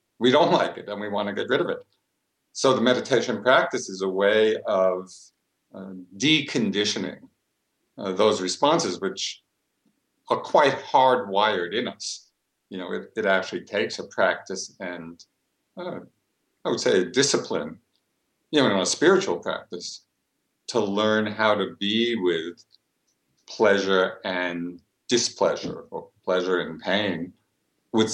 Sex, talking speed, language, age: male, 140 wpm, English, 50-69